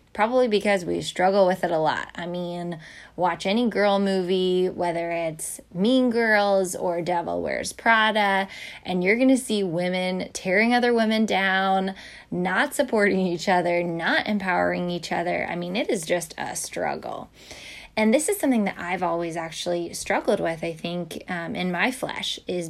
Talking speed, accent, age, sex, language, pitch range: 170 wpm, American, 20-39, female, English, 175-215 Hz